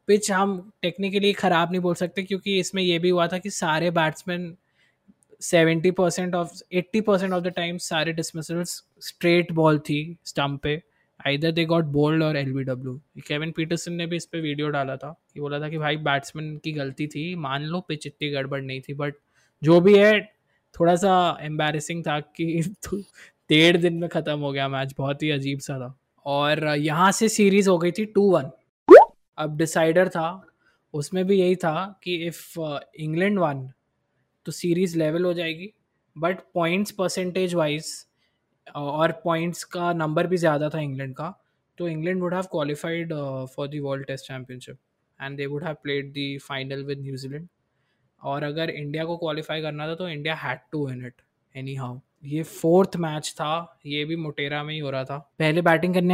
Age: 20-39